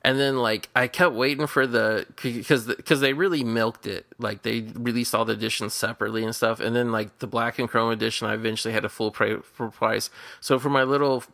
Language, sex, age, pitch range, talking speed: English, male, 20-39, 110-125 Hz, 215 wpm